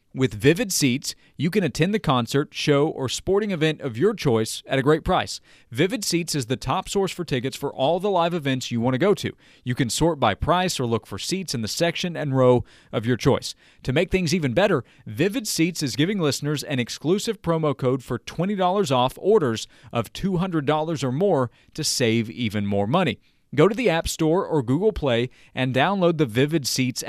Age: 40-59